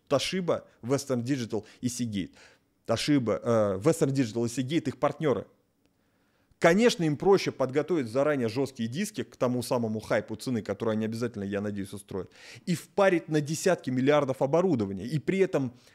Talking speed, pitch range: 130 wpm, 110-150 Hz